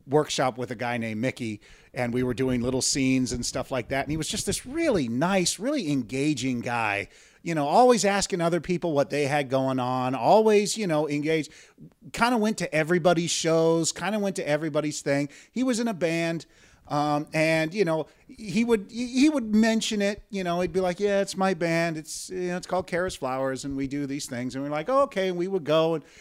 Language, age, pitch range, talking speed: English, 40-59, 145-200 Hz, 225 wpm